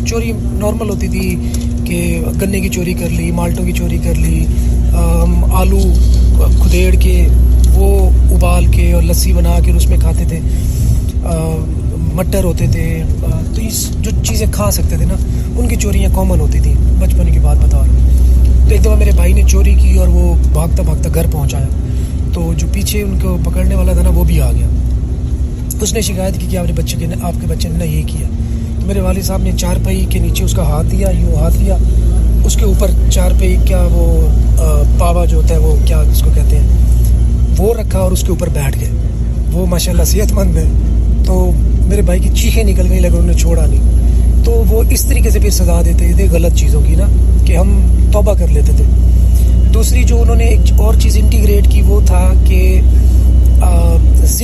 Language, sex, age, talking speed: Urdu, male, 20-39, 200 wpm